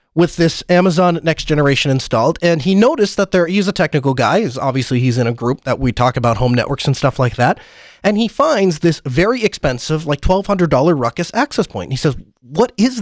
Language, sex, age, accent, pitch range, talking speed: English, male, 30-49, American, 150-210 Hz, 210 wpm